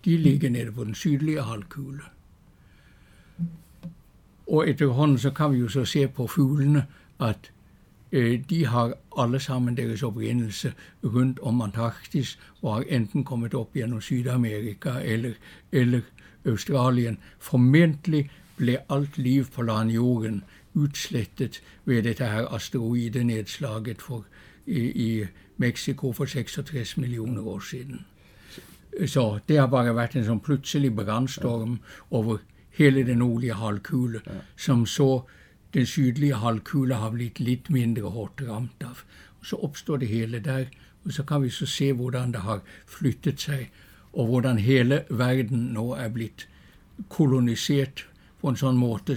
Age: 60-79